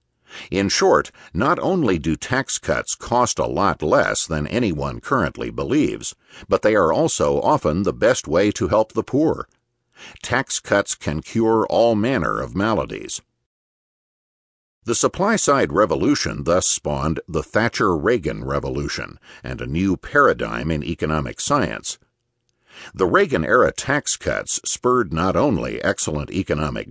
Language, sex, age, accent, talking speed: English, male, 50-69, American, 130 wpm